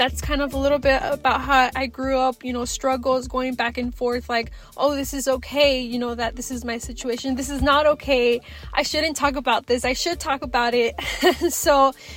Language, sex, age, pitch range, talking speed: English, female, 20-39, 225-260 Hz, 220 wpm